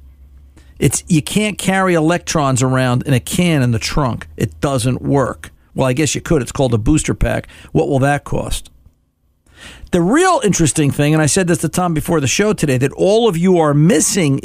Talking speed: 205 wpm